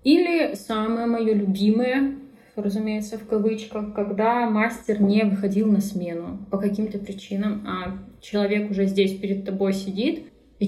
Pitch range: 195-235 Hz